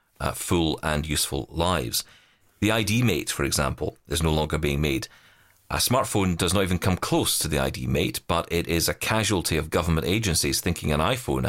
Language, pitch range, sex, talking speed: English, 80-105 Hz, male, 195 wpm